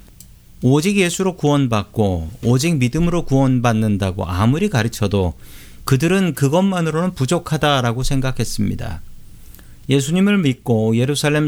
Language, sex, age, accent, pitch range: Korean, male, 40-59, native, 105-145 Hz